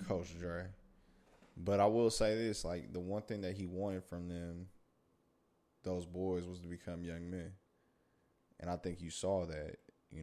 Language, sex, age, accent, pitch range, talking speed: English, male, 20-39, American, 85-95 Hz, 175 wpm